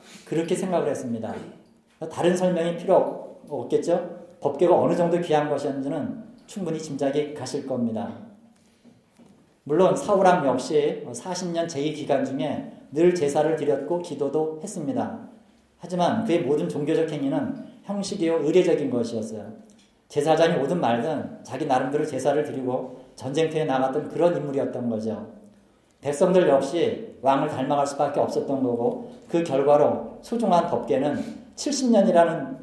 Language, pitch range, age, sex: Korean, 140-180 Hz, 40-59, male